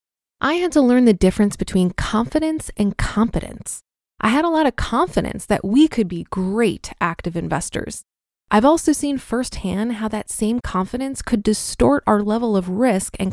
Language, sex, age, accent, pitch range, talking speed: English, female, 20-39, American, 195-260 Hz, 170 wpm